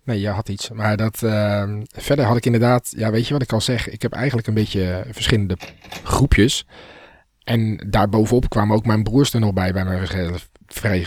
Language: Dutch